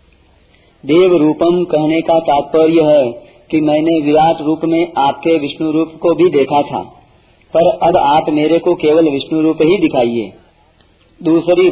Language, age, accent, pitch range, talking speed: Hindi, 40-59, native, 140-170 Hz, 150 wpm